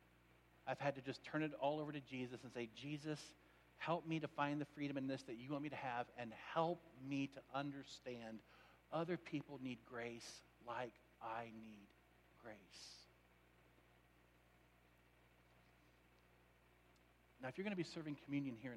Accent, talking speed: American, 155 wpm